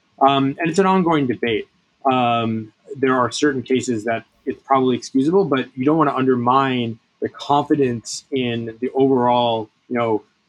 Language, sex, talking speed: English, male, 160 wpm